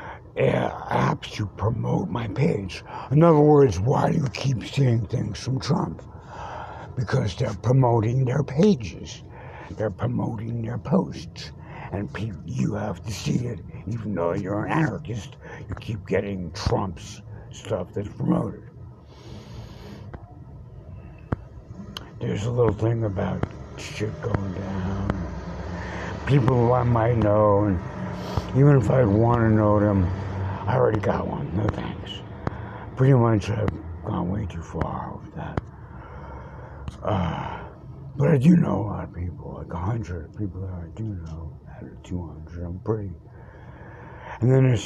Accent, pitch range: American, 90-120 Hz